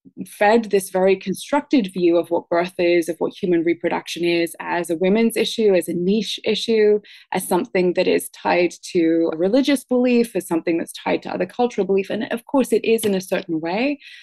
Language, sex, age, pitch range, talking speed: English, female, 20-39, 170-205 Hz, 205 wpm